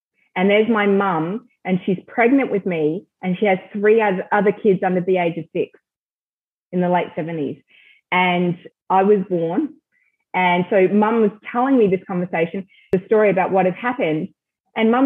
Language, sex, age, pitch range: English, female, 20-39, 180-215 Hz